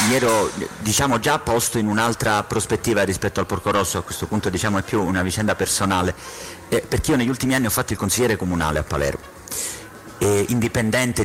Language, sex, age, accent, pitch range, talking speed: Italian, male, 50-69, native, 95-115 Hz, 190 wpm